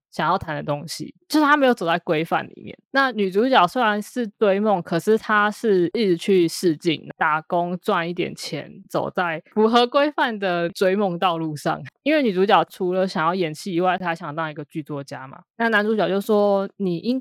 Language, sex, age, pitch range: Chinese, female, 20-39, 165-210 Hz